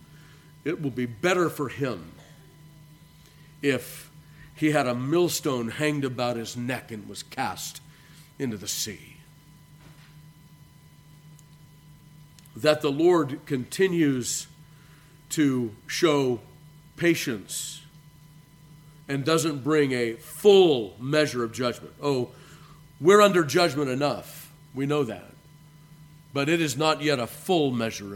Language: English